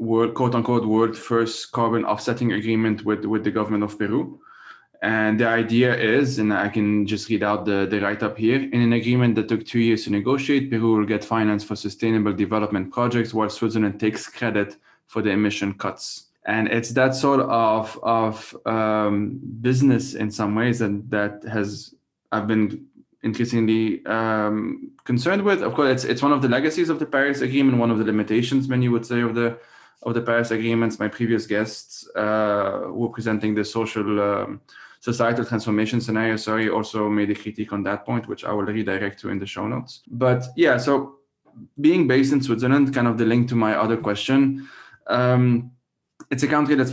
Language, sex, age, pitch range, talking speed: English, male, 20-39, 105-125 Hz, 190 wpm